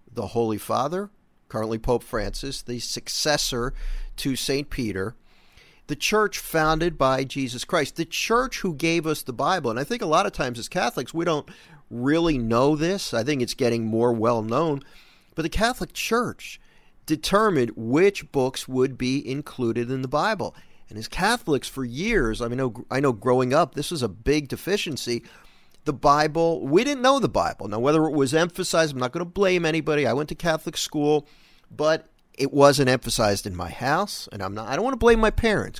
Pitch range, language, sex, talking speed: 125-165 Hz, English, male, 195 wpm